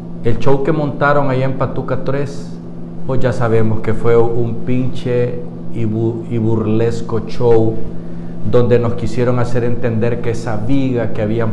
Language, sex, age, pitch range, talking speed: Spanish, male, 50-69, 105-130 Hz, 145 wpm